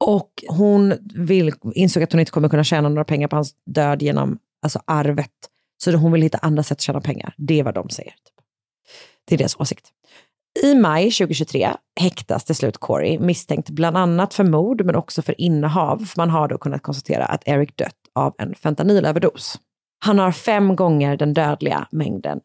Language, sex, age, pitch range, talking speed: Swedish, female, 30-49, 145-180 Hz, 185 wpm